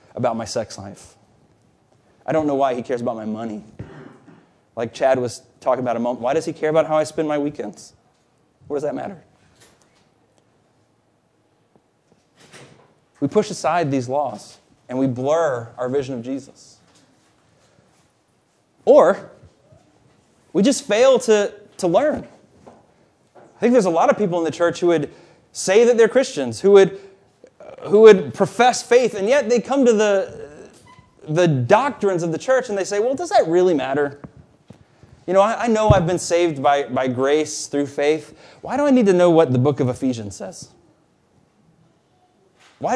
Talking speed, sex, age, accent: 170 wpm, male, 30-49, American